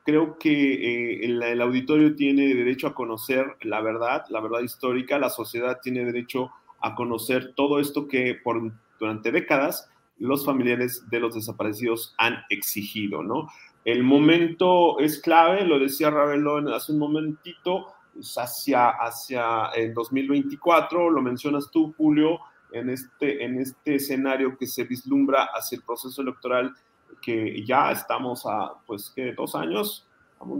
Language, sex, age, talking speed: Spanish, male, 30-49, 145 wpm